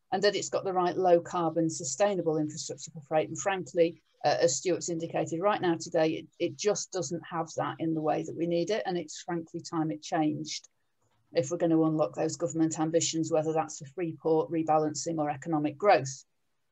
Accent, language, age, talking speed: British, English, 40-59, 195 wpm